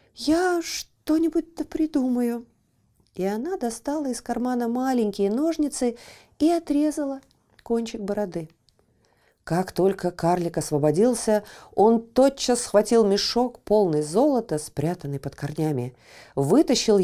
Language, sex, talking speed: Russian, female, 100 wpm